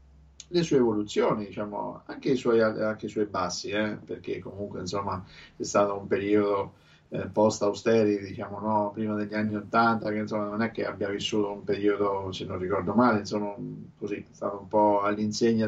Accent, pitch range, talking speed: native, 100-110 Hz, 170 wpm